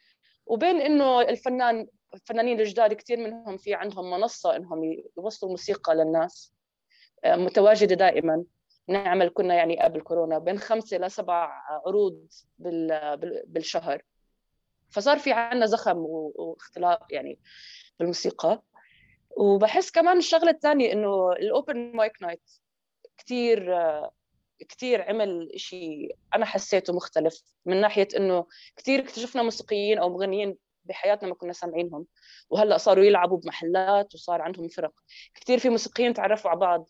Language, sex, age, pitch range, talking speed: Arabic, female, 20-39, 170-225 Hz, 120 wpm